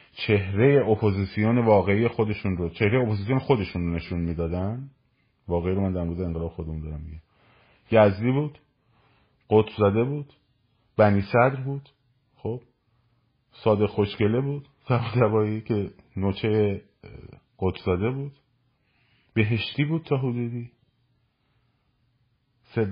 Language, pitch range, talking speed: Persian, 95-125 Hz, 100 wpm